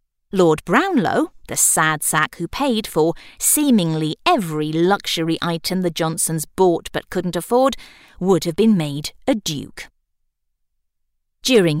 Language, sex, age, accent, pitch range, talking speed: English, female, 40-59, British, 155-215 Hz, 125 wpm